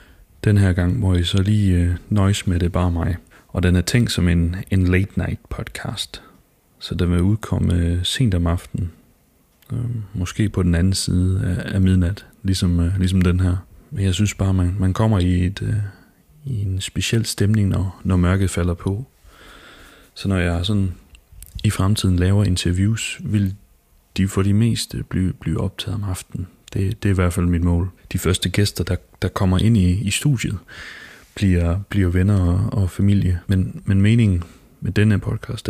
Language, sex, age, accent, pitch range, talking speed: Danish, male, 30-49, native, 90-105 Hz, 180 wpm